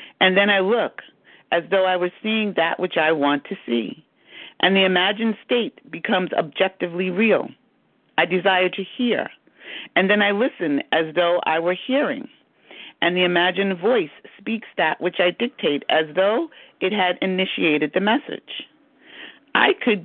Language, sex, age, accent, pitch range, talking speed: English, female, 50-69, American, 160-220 Hz, 160 wpm